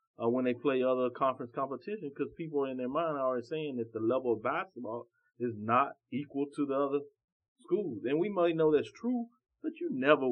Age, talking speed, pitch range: 30-49, 210 wpm, 115-135 Hz